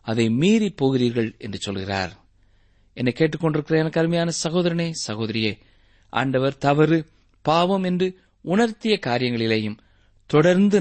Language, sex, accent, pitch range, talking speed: Tamil, male, native, 110-185 Hz, 90 wpm